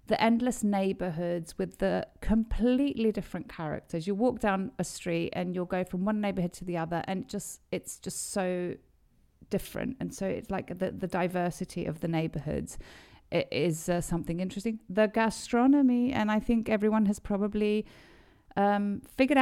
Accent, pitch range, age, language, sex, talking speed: British, 175-210 Hz, 40-59, Greek, female, 160 wpm